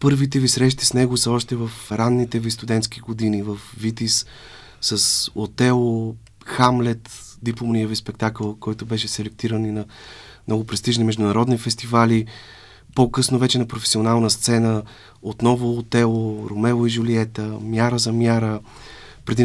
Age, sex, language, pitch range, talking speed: 30-49, male, Bulgarian, 110-120 Hz, 130 wpm